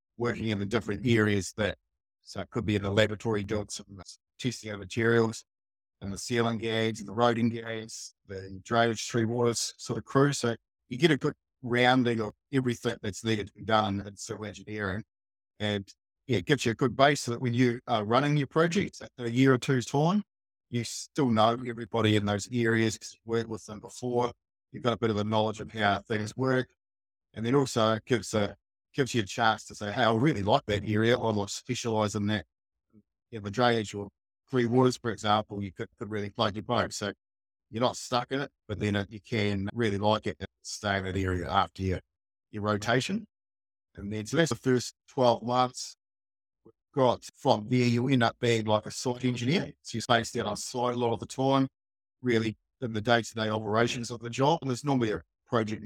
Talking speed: 210 wpm